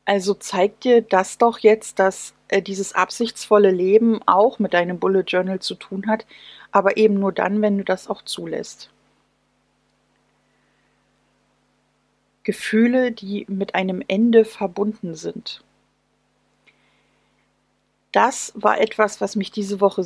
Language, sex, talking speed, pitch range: German, female, 125 wpm, 195-225 Hz